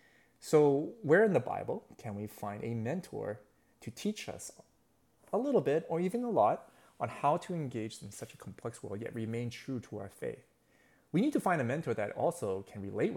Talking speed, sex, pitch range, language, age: 205 wpm, male, 110-150 Hz, English, 30-49